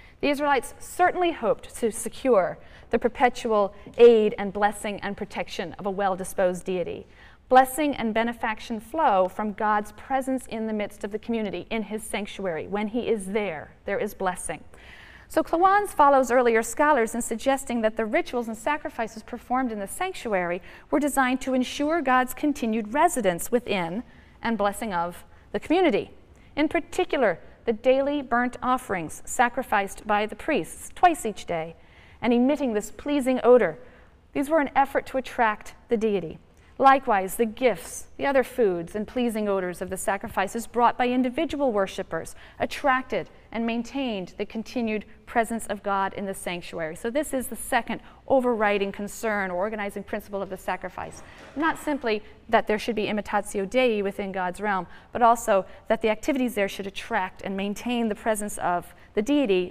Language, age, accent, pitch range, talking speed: English, 40-59, American, 200-260 Hz, 160 wpm